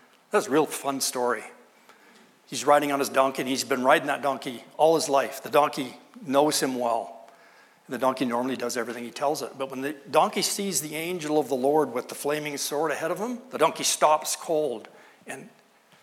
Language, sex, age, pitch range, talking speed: English, male, 60-79, 130-170 Hz, 200 wpm